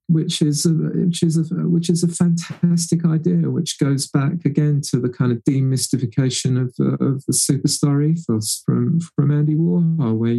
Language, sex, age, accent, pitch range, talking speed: English, male, 40-59, British, 130-170 Hz, 185 wpm